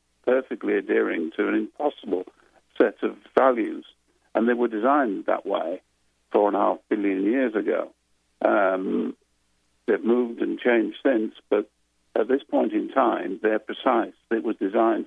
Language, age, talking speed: English, 60-79, 150 wpm